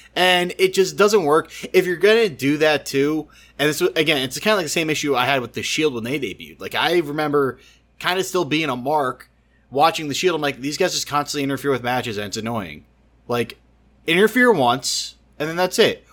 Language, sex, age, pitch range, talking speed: English, male, 30-49, 130-175 Hz, 225 wpm